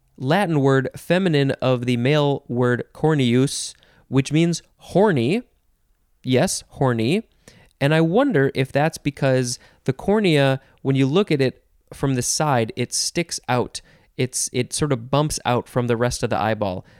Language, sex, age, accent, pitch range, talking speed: English, male, 20-39, American, 115-155 Hz, 155 wpm